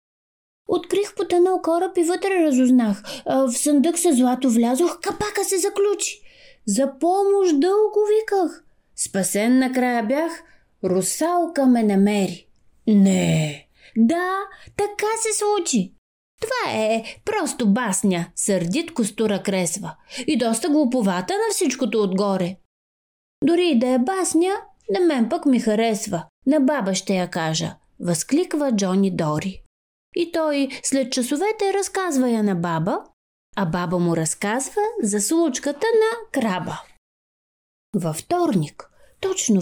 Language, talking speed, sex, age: Bulgarian, 120 wpm, female, 20-39